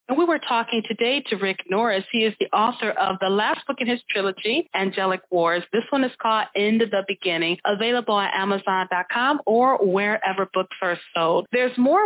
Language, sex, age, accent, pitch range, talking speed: English, female, 40-59, American, 200-265 Hz, 195 wpm